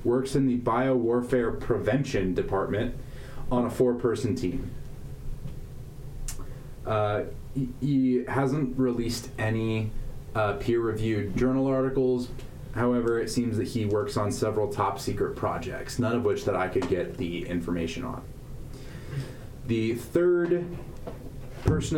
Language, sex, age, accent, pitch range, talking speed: English, male, 20-39, American, 115-130 Hz, 115 wpm